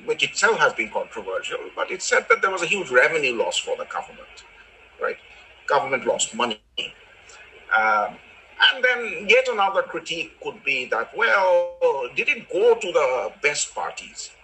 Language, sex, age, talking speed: English, male, 50-69, 160 wpm